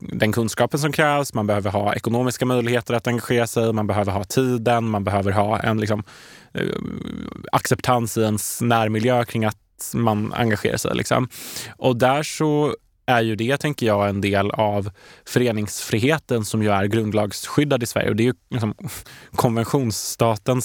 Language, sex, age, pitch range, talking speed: Swedish, male, 20-39, 105-125 Hz, 160 wpm